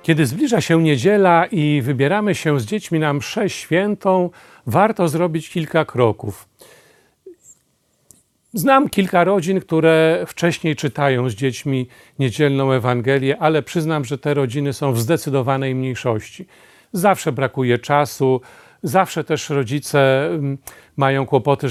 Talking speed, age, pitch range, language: 120 wpm, 40-59, 130-165 Hz, Polish